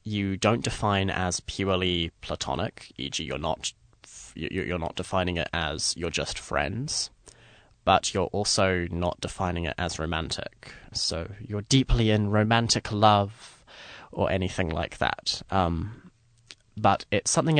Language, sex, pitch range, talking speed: English, male, 90-115 Hz, 135 wpm